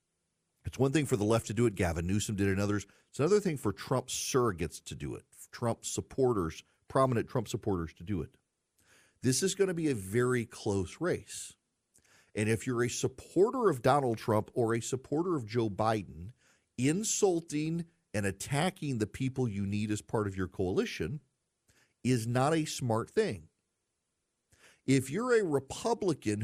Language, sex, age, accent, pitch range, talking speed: English, male, 40-59, American, 115-155 Hz, 170 wpm